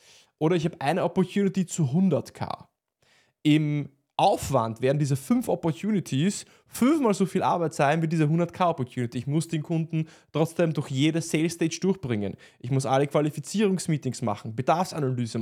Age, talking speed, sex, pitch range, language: 20-39, 150 wpm, male, 135-170 Hz, German